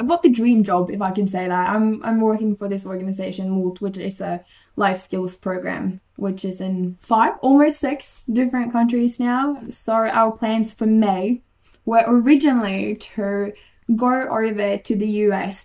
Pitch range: 195-235 Hz